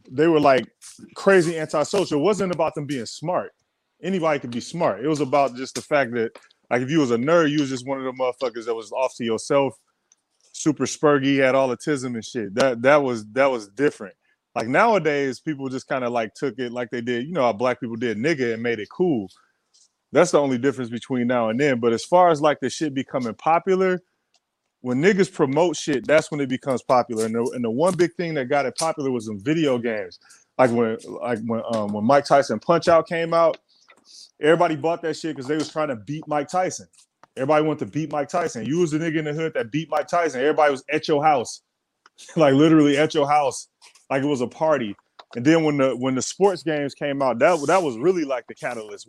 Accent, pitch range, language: American, 125-160 Hz, English